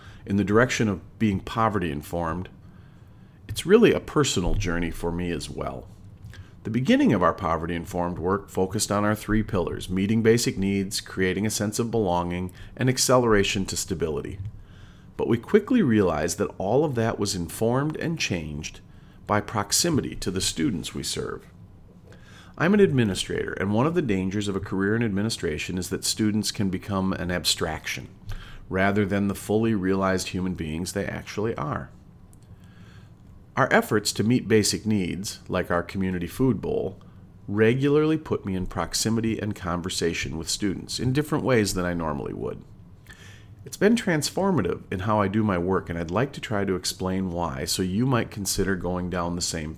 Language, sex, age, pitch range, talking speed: English, male, 40-59, 90-110 Hz, 170 wpm